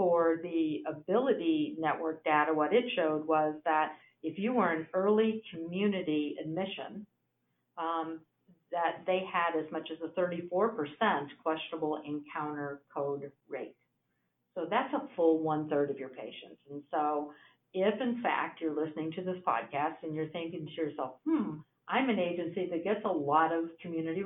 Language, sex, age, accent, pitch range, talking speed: English, female, 50-69, American, 155-190 Hz, 155 wpm